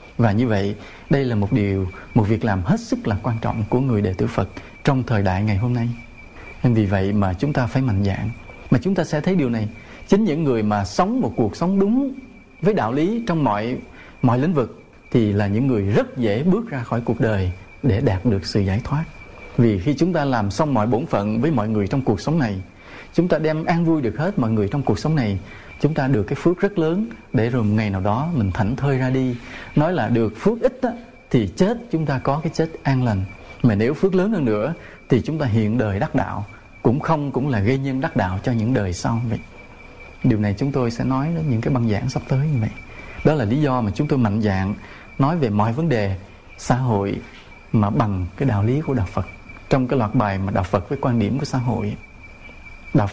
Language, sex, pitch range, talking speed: English, male, 105-145 Hz, 245 wpm